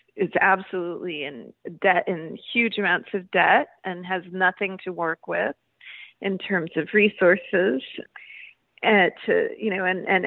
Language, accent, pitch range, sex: English, American, 180-220 Hz, female